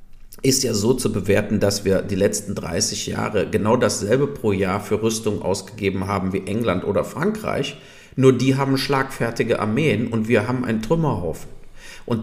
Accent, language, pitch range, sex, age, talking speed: German, German, 100-140 Hz, male, 40-59, 165 wpm